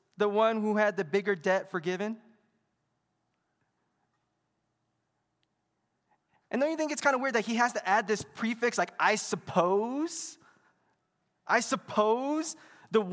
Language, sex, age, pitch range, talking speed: English, male, 20-39, 175-245 Hz, 135 wpm